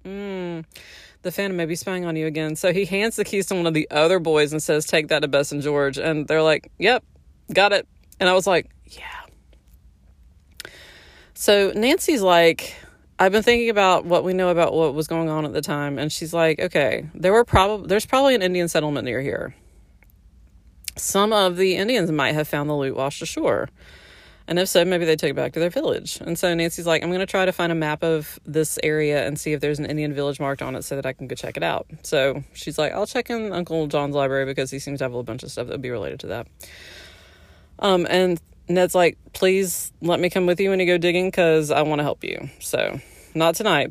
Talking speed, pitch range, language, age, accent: 235 wpm, 145-180 Hz, English, 20-39, American